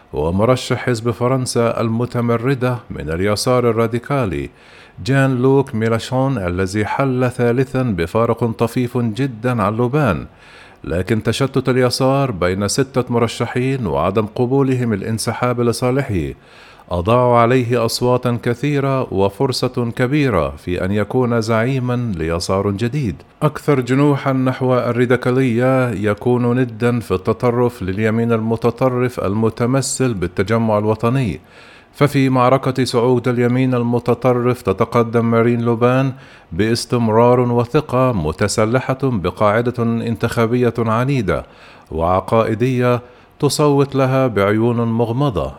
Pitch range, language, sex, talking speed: 115-130 Hz, Arabic, male, 95 wpm